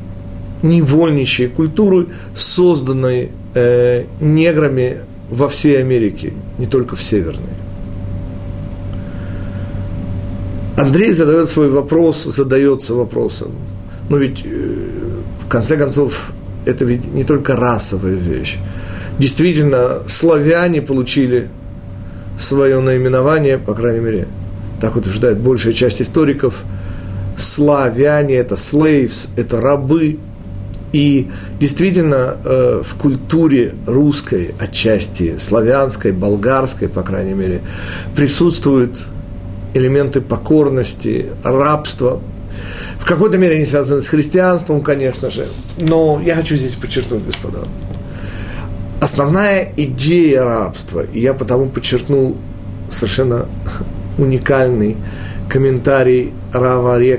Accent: native